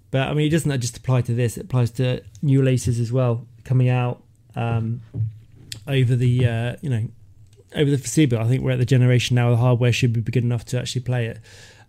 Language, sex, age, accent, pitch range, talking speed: English, male, 20-39, British, 115-140 Hz, 220 wpm